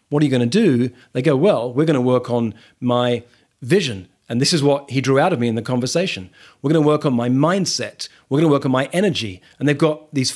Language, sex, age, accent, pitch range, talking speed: English, male, 40-59, British, 120-155 Hz, 265 wpm